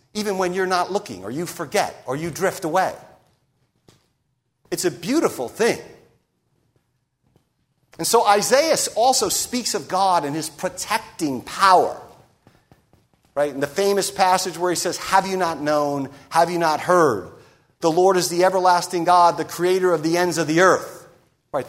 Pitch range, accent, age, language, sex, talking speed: 155-210 Hz, American, 50-69, English, male, 160 wpm